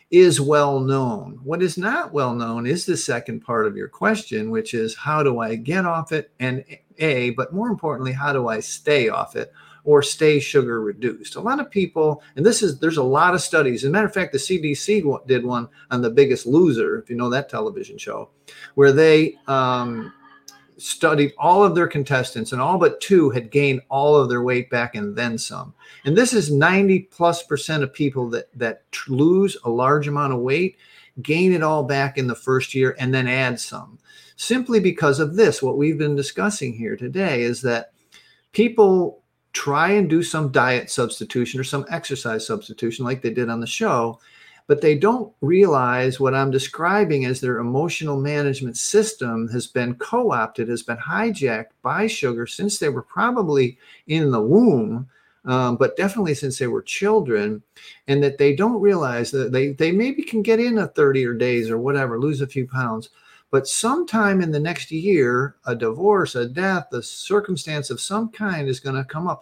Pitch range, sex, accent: 130-185 Hz, male, American